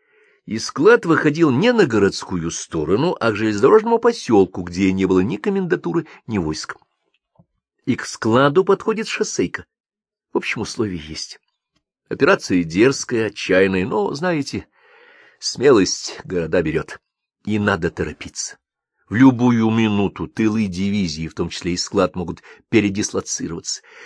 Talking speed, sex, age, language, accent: 125 wpm, male, 50-69, Russian, native